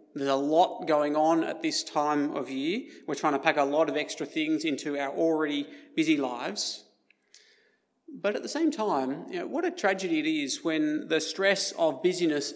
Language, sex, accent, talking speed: English, male, Australian, 195 wpm